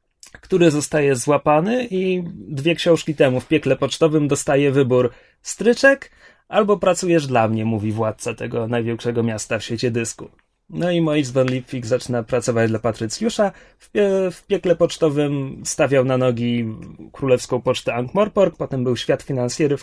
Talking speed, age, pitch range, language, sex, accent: 145 wpm, 30-49, 135-175 Hz, Polish, male, native